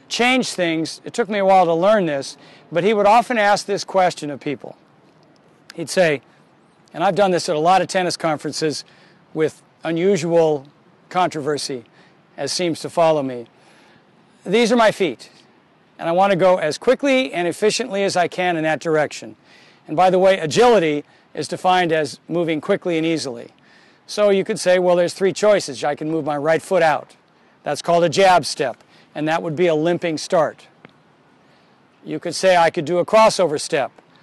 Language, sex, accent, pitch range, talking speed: English, male, American, 155-195 Hz, 185 wpm